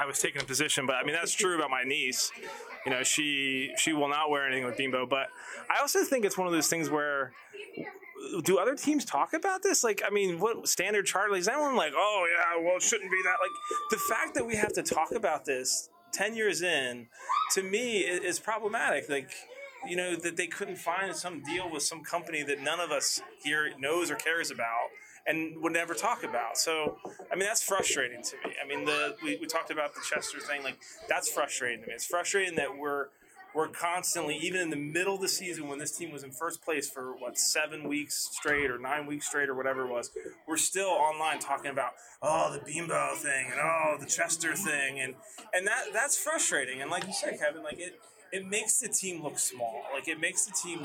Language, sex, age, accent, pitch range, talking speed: English, male, 20-39, American, 145-210 Hz, 225 wpm